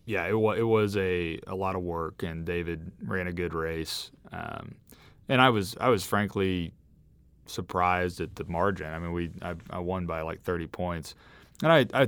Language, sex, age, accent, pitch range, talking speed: English, male, 30-49, American, 80-95 Hz, 200 wpm